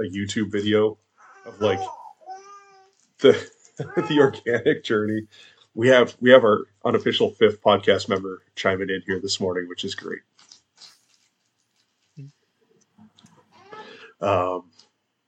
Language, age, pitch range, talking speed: English, 30-49, 100-130 Hz, 105 wpm